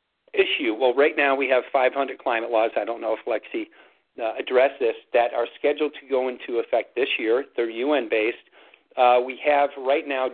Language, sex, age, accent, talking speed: English, male, 50-69, American, 185 wpm